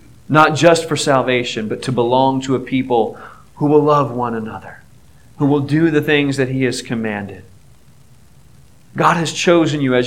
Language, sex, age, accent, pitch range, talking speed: English, male, 40-59, American, 125-155 Hz, 175 wpm